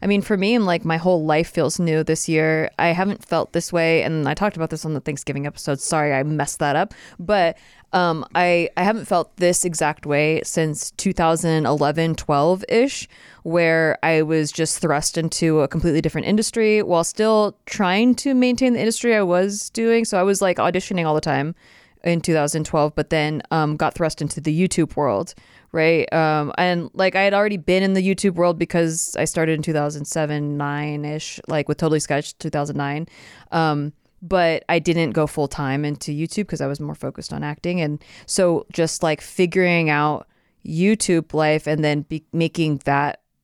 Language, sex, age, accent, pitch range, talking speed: English, female, 20-39, American, 150-180 Hz, 185 wpm